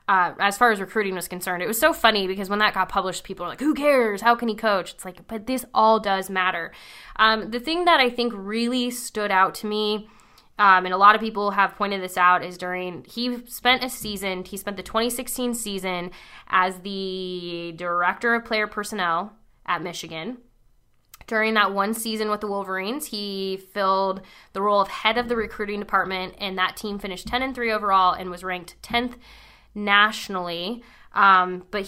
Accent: American